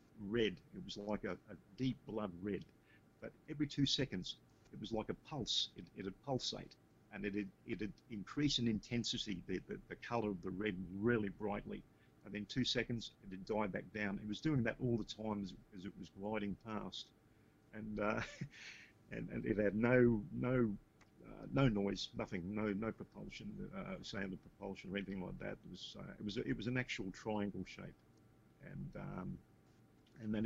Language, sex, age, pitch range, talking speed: English, male, 50-69, 105-125 Hz, 195 wpm